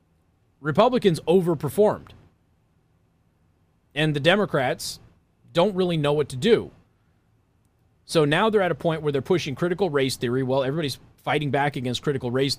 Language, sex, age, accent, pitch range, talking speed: English, male, 30-49, American, 120-145 Hz, 145 wpm